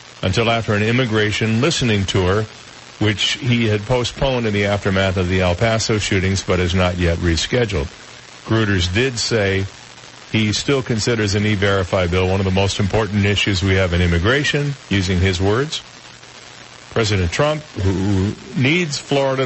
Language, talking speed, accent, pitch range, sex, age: English, 155 wpm, American, 95-120 Hz, male, 50-69